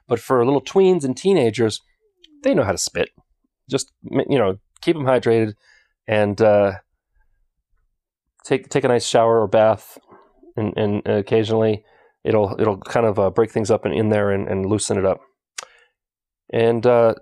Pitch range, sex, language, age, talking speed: 110-155 Hz, male, English, 30-49, 160 wpm